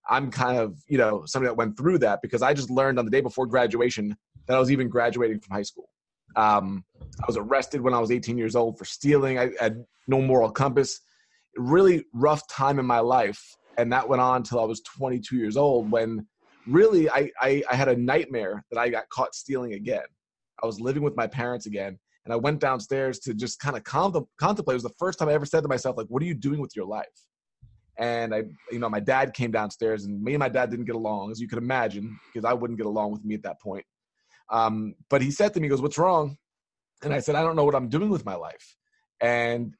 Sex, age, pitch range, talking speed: male, 20-39, 115-140 Hz, 240 wpm